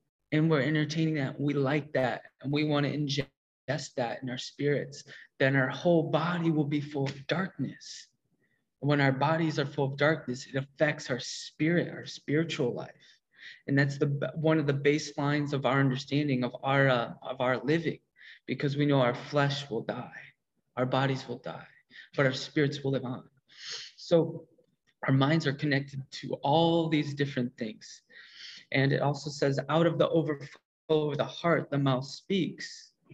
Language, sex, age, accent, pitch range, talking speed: English, male, 20-39, American, 135-150 Hz, 170 wpm